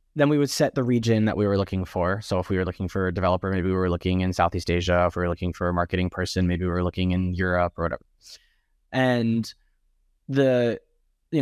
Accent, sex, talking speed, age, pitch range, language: American, male, 235 wpm, 20-39, 90-150 Hz, English